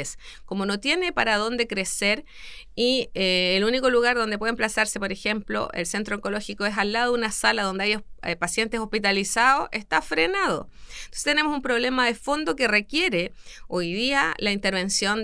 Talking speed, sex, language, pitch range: 175 wpm, female, Spanish, 175-230 Hz